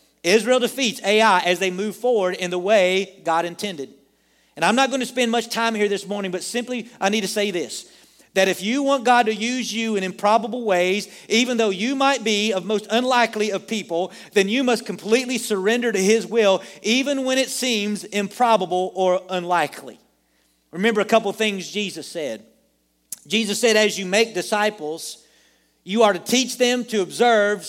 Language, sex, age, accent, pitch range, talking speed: English, male, 40-59, American, 180-225 Hz, 185 wpm